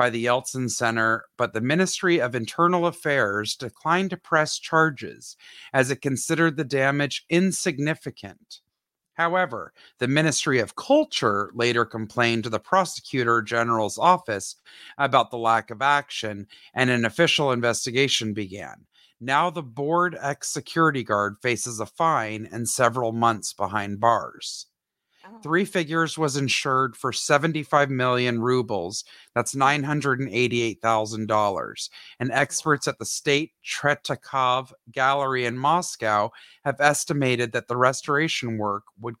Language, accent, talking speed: English, American, 125 wpm